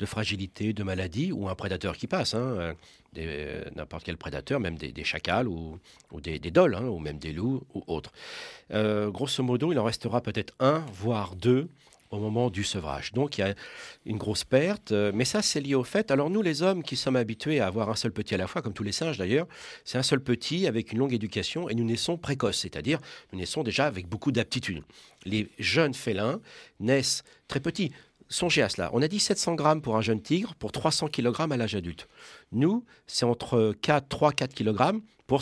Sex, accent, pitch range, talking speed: male, French, 105-145 Hz, 220 wpm